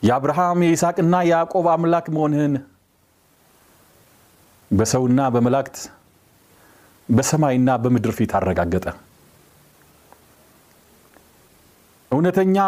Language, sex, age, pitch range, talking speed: Amharic, male, 40-59, 105-170 Hz, 50 wpm